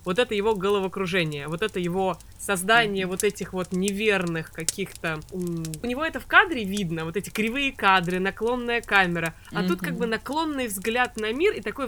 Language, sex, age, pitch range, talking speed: Russian, female, 20-39, 180-225 Hz, 175 wpm